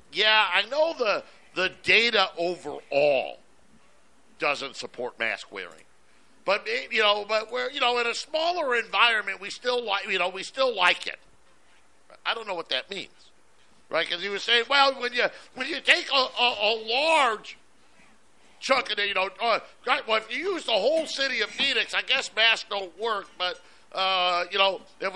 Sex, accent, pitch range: male, American, 190-245 Hz